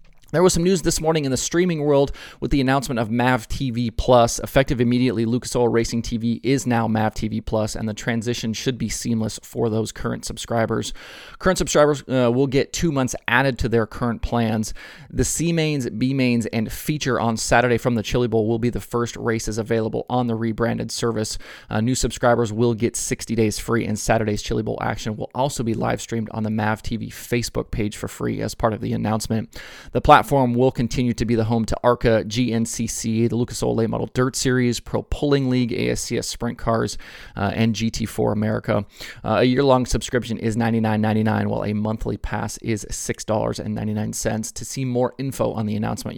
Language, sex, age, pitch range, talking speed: English, male, 30-49, 110-125 Hz, 190 wpm